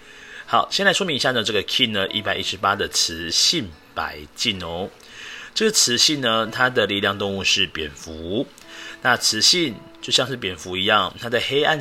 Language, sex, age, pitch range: Chinese, male, 30-49, 95-125 Hz